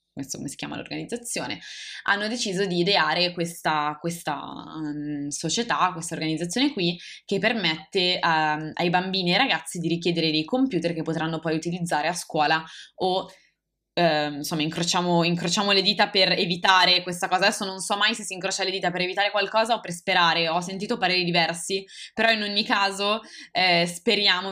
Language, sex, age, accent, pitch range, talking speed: Italian, female, 20-39, native, 160-195 Hz, 165 wpm